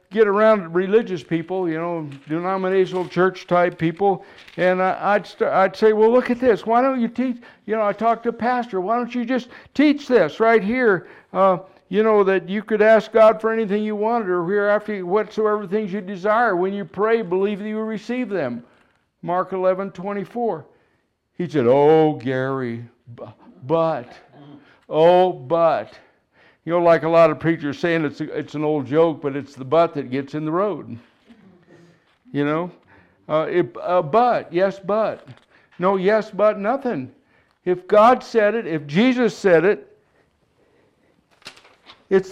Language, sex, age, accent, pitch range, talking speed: English, male, 60-79, American, 170-220 Hz, 170 wpm